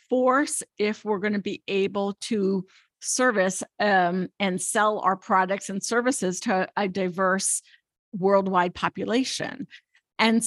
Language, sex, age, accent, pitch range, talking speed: English, female, 50-69, American, 190-225 Hz, 125 wpm